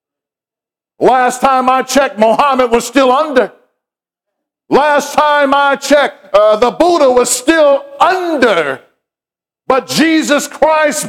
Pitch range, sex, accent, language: 235-295 Hz, male, American, English